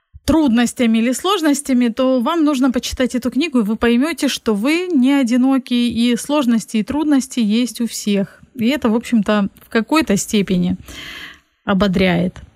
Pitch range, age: 210-260 Hz, 30-49